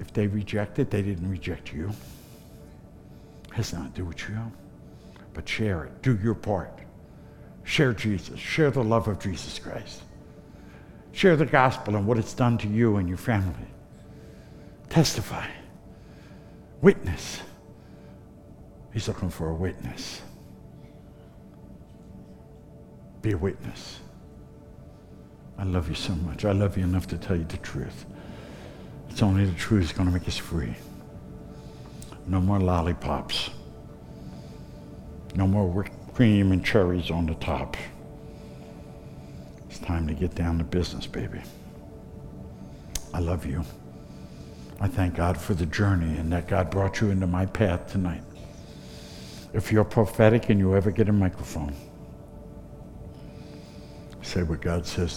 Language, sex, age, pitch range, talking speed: English, male, 60-79, 85-105 Hz, 135 wpm